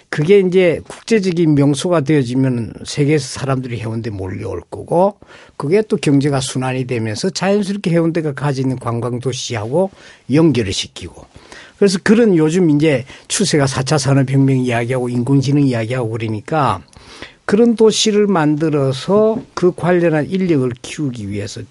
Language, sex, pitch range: Korean, male, 115-160 Hz